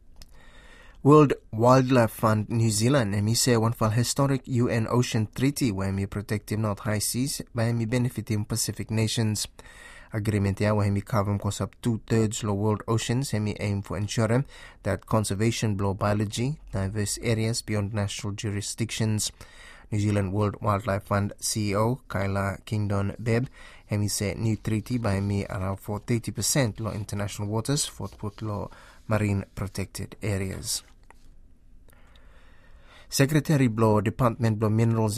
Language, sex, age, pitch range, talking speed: English, male, 20-39, 100-115 Hz, 140 wpm